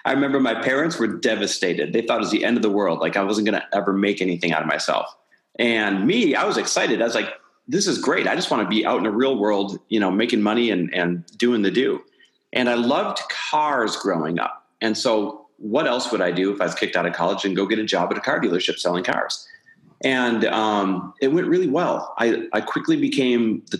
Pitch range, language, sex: 110-130 Hz, English, male